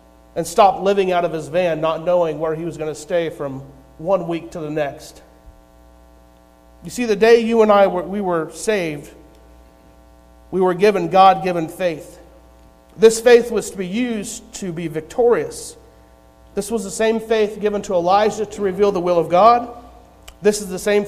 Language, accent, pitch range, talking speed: English, American, 150-210 Hz, 180 wpm